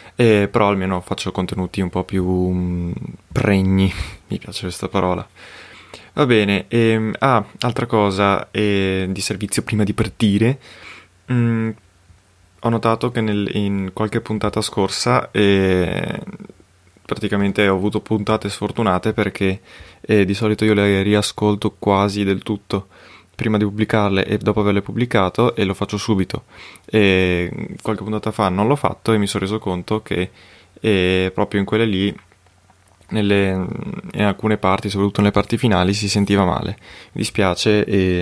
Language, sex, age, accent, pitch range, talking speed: Italian, male, 20-39, native, 95-110 Hz, 140 wpm